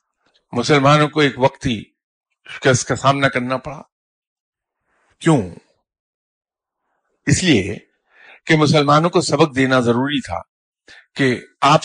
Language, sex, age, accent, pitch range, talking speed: English, male, 50-69, Indian, 110-145 Hz, 110 wpm